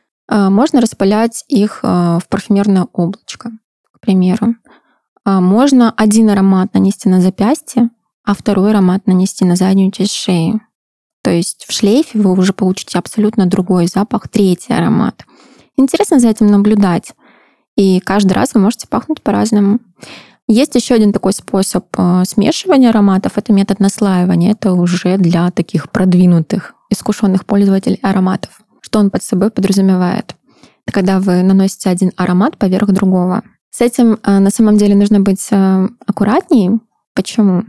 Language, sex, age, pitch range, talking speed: Russian, female, 20-39, 190-220 Hz, 135 wpm